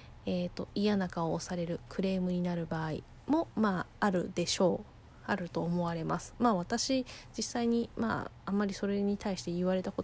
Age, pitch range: 20-39, 170-230 Hz